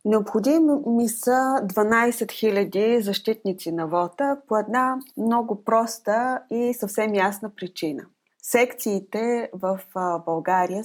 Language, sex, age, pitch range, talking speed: Bulgarian, female, 30-49, 190-250 Hz, 105 wpm